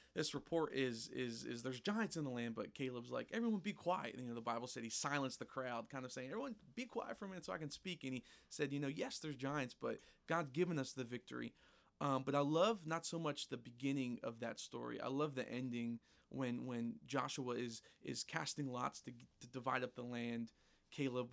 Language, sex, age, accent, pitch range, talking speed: English, male, 20-39, American, 125-150 Hz, 235 wpm